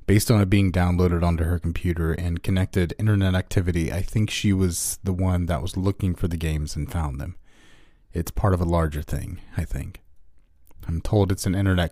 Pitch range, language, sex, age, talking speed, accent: 75-100 Hz, English, male, 30-49, 200 wpm, American